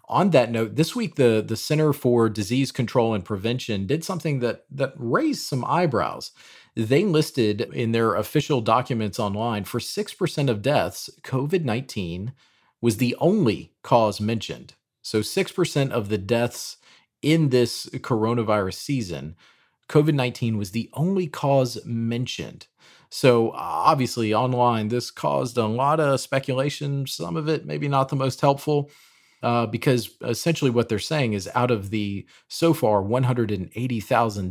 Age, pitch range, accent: 40-59, 110-140 Hz, American